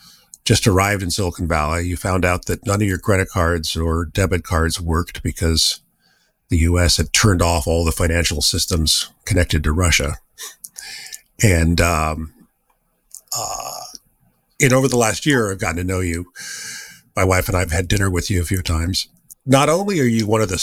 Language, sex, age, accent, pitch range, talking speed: English, male, 50-69, American, 85-115 Hz, 180 wpm